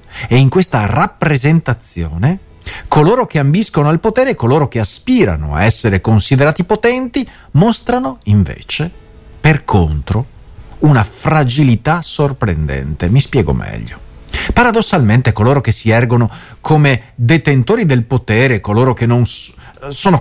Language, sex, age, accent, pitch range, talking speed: Italian, male, 40-59, native, 105-165 Hz, 105 wpm